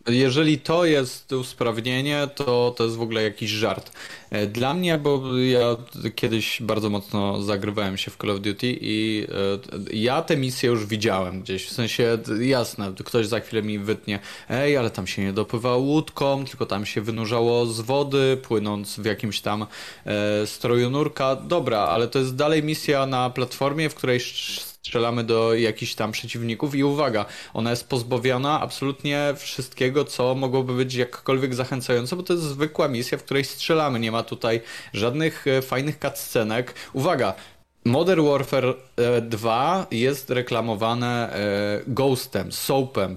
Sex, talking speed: male, 150 wpm